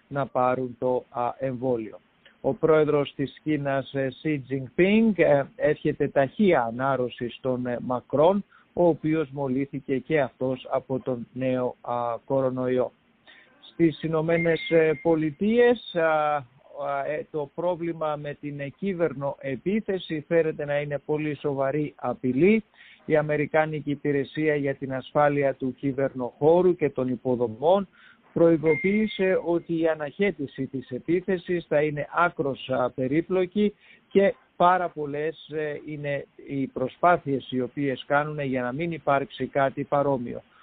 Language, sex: English, male